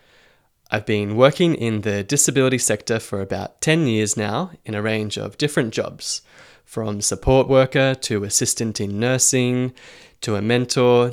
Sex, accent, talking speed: male, Australian, 150 wpm